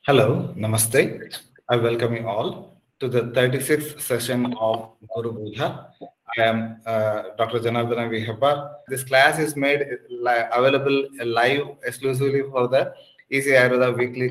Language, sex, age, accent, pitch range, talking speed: English, male, 30-49, Indian, 115-135 Hz, 130 wpm